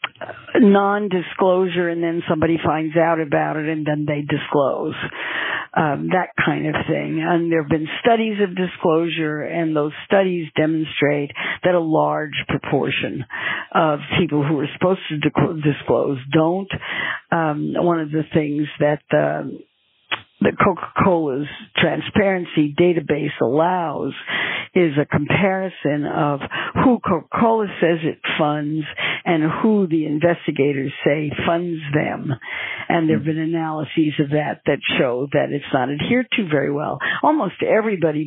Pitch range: 150-175 Hz